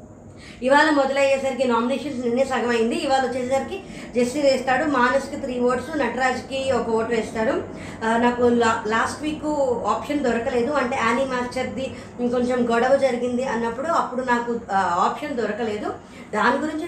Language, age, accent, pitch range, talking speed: Telugu, 20-39, native, 235-275 Hz, 120 wpm